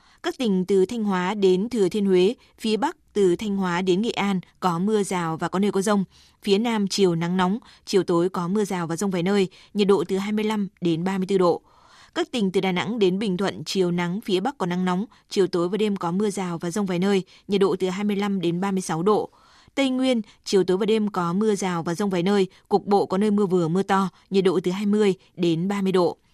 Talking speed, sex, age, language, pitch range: 245 wpm, female, 20-39, Vietnamese, 180-210 Hz